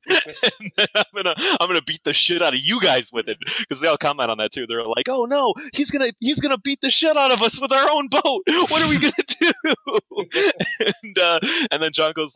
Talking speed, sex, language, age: 245 wpm, male, English, 20-39